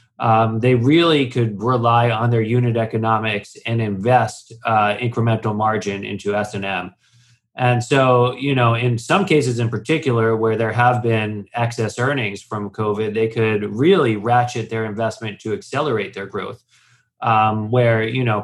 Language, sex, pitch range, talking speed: English, male, 110-125 Hz, 155 wpm